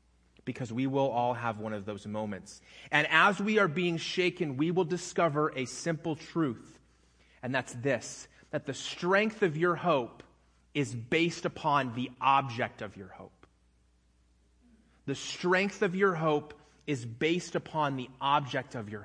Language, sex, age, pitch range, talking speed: English, male, 30-49, 125-175 Hz, 160 wpm